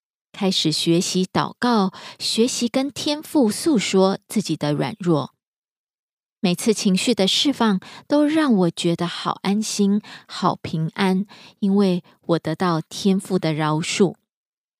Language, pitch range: Korean, 175-230 Hz